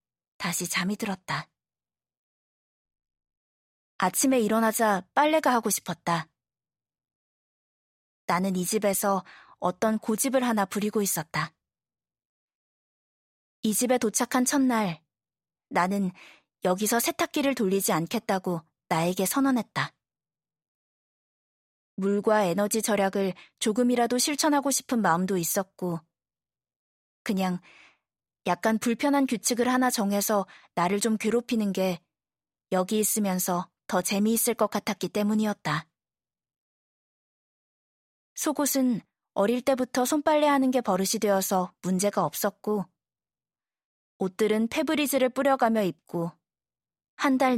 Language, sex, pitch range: Korean, female, 180-245 Hz